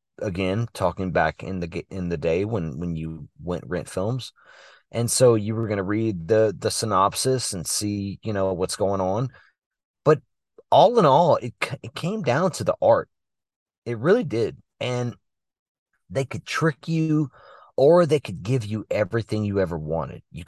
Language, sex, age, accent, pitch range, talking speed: English, male, 30-49, American, 105-145 Hz, 175 wpm